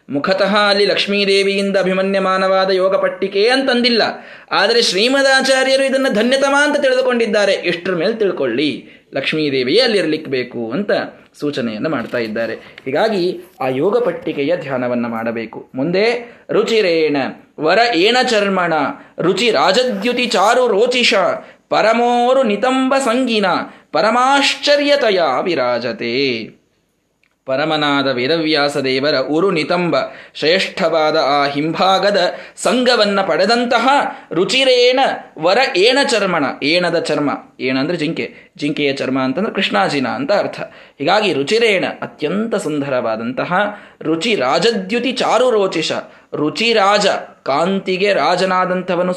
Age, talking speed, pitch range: 20-39, 95 wpm, 160-245 Hz